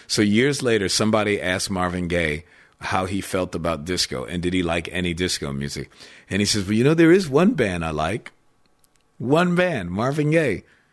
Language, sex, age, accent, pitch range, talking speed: English, male, 50-69, American, 85-115 Hz, 190 wpm